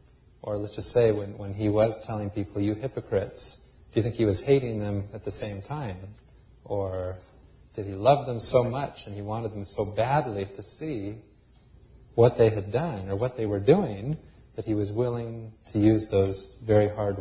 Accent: American